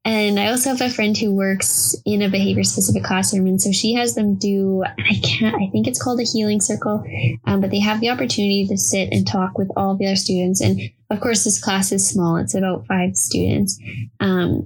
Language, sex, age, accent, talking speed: English, female, 10-29, American, 230 wpm